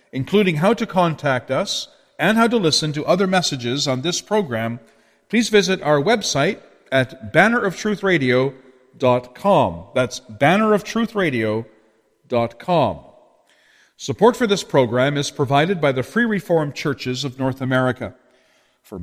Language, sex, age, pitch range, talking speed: English, male, 50-69, 125-190 Hz, 120 wpm